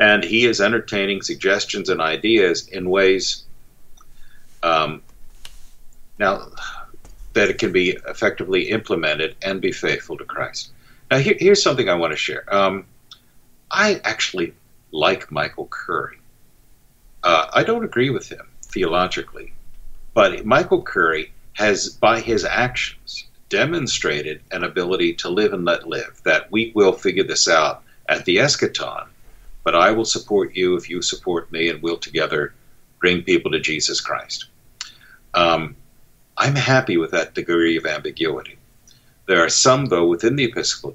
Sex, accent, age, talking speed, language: male, American, 50-69, 145 wpm, English